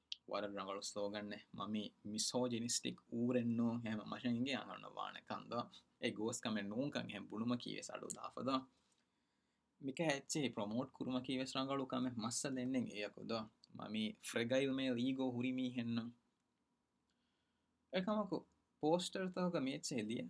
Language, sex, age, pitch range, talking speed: Urdu, male, 20-39, 110-150 Hz, 70 wpm